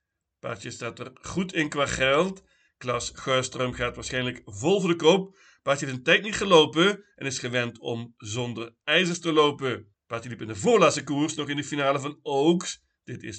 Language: Dutch